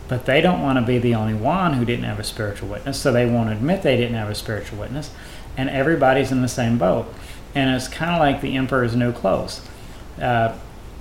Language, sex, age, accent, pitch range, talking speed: English, male, 40-59, American, 115-135 Hz, 215 wpm